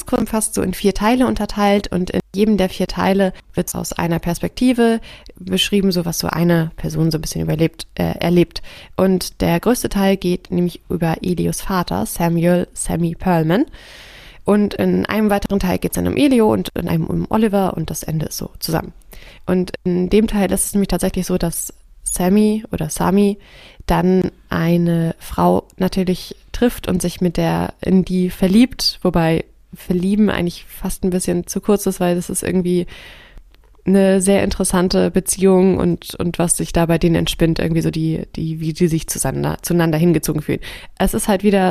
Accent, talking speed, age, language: German, 185 wpm, 20-39, German